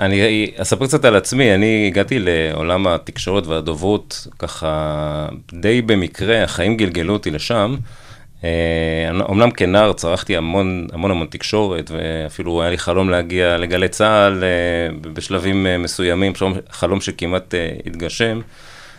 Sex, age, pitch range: male, 30-49, 85-105 Hz